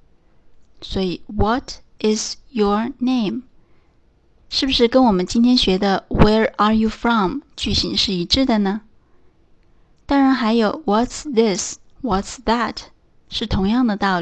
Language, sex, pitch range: Chinese, female, 205-260 Hz